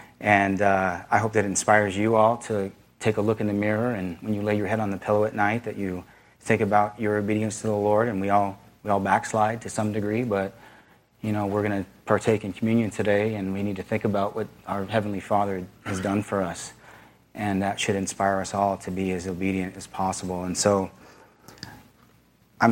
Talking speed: 220 wpm